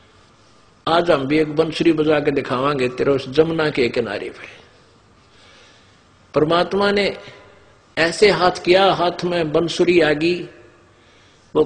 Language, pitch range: Hindi, 140-190 Hz